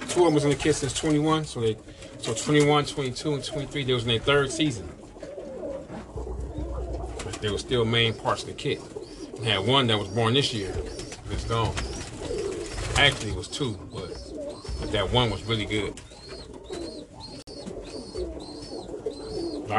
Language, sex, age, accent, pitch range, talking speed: English, male, 40-59, American, 110-150 Hz, 160 wpm